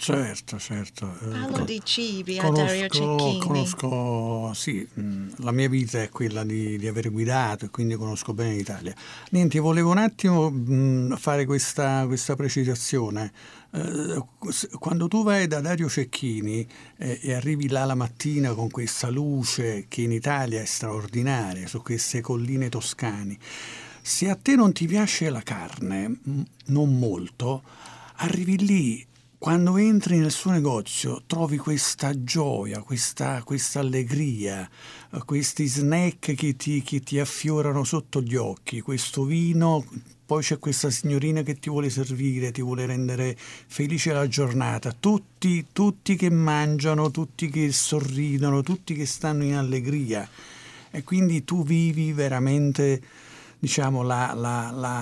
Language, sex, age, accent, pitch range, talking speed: English, male, 50-69, Italian, 120-155 Hz, 135 wpm